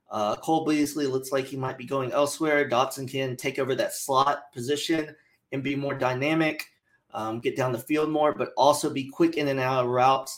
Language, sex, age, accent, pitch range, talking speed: English, male, 30-49, American, 125-145 Hz, 210 wpm